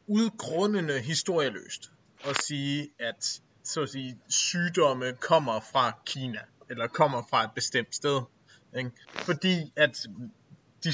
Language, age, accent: Danish, 30-49, native